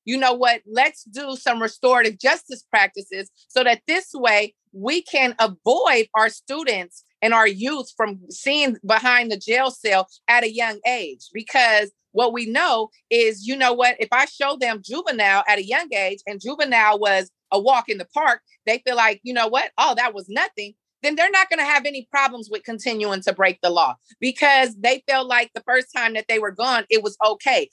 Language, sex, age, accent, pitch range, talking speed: English, female, 30-49, American, 205-255 Hz, 205 wpm